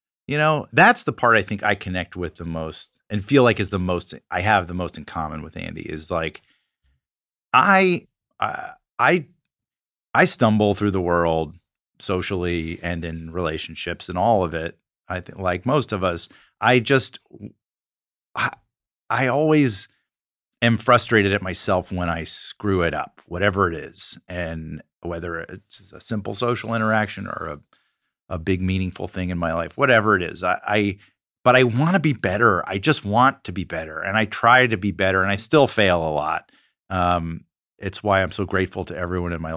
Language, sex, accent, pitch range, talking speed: English, male, American, 90-125 Hz, 185 wpm